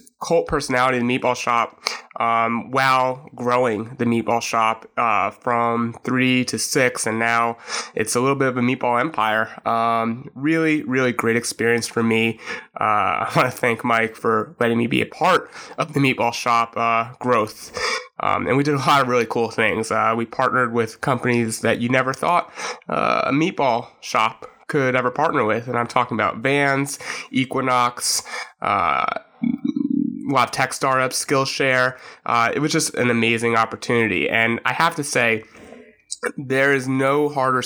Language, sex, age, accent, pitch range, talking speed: English, male, 20-39, American, 115-135 Hz, 170 wpm